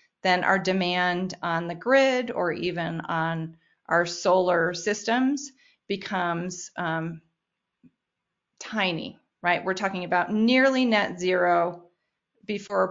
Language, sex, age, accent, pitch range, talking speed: English, female, 30-49, American, 175-225 Hz, 105 wpm